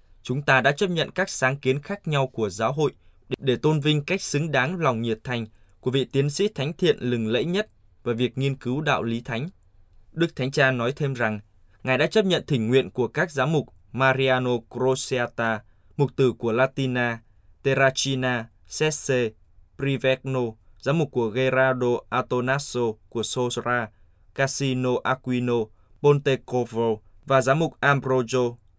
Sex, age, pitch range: male, 20-39, 115-135 Hz